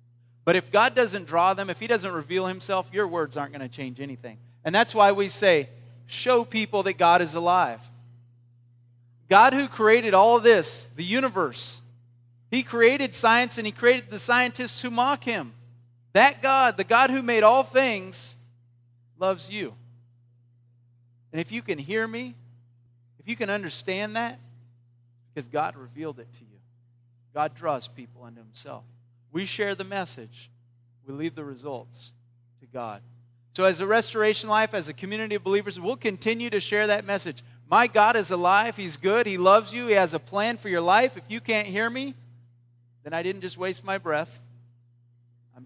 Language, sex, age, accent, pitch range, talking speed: English, male, 40-59, American, 120-200 Hz, 175 wpm